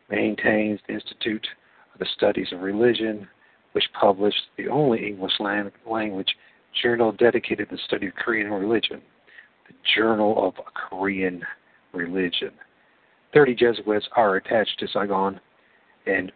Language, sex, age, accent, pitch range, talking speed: English, male, 50-69, American, 105-130 Hz, 125 wpm